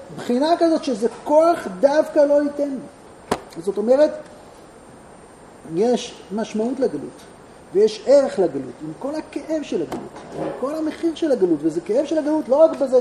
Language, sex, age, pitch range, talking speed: Hebrew, male, 40-59, 240-320 Hz, 150 wpm